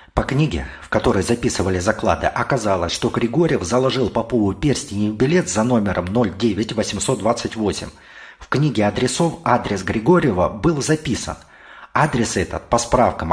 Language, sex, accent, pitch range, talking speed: Russian, male, native, 100-130 Hz, 125 wpm